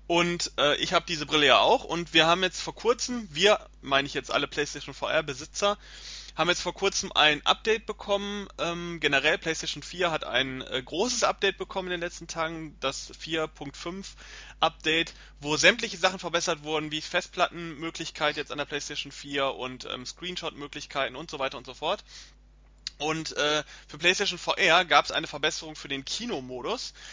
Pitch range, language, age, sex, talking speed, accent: 145-180 Hz, German, 30-49, male, 175 wpm, German